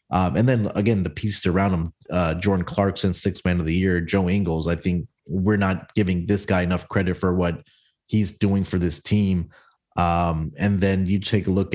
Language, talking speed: English, 205 wpm